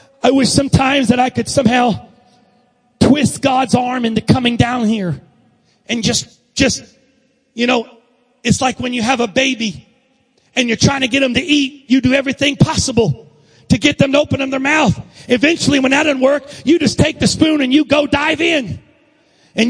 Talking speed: 190 wpm